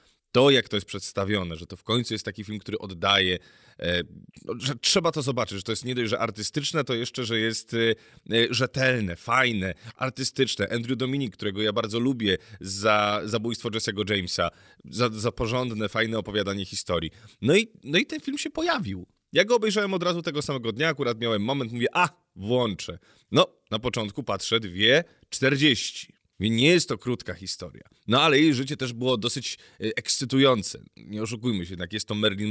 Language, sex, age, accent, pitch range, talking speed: Polish, male, 30-49, native, 105-135 Hz, 175 wpm